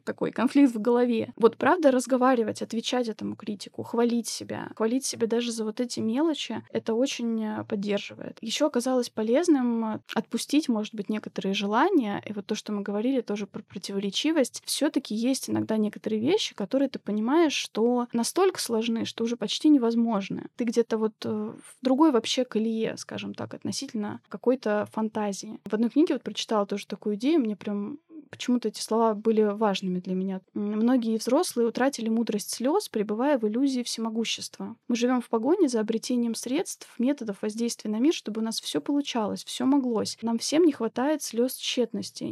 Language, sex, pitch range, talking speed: Russian, female, 215-260 Hz, 165 wpm